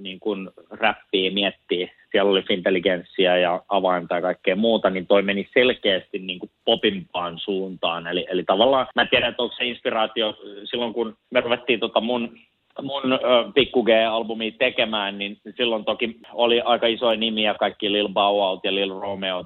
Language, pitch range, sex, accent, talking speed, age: Finnish, 95-115 Hz, male, native, 160 wpm, 30-49